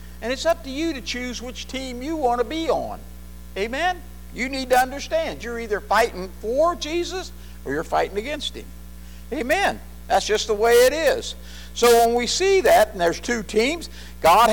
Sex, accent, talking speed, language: male, American, 190 wpm, English